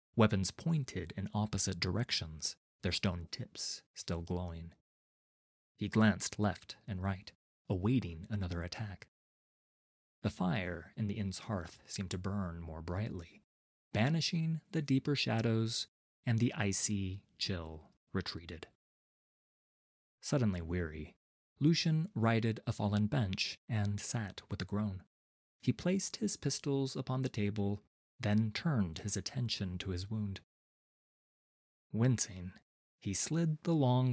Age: 30-49